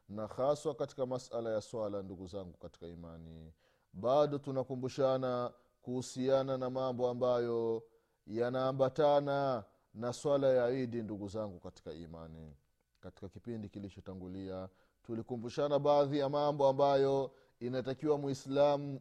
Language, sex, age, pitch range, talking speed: Swahili, male, 30-49, 100-145 Hz, 110 wpm